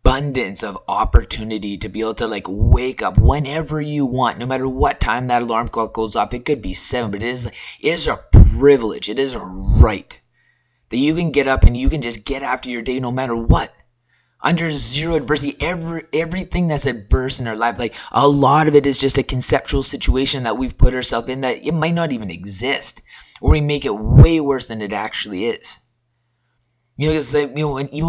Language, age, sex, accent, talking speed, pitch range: English, 20-39, male, American, 220 wpm, 115-140 Hz